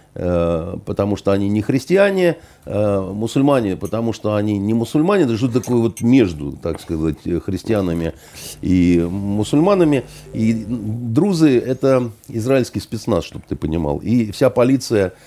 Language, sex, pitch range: Russian, male, 90-135 Hz